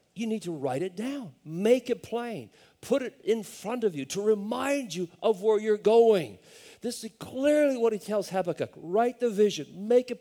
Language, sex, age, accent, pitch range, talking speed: English, male, 50-69, American, 140-225 Hz, 200 wpm